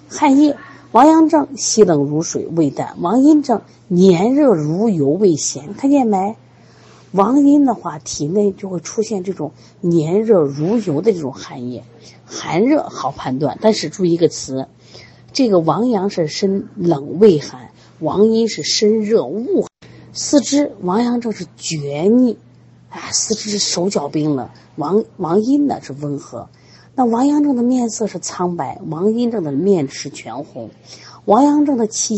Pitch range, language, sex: 150-225 Hz, Chinese, female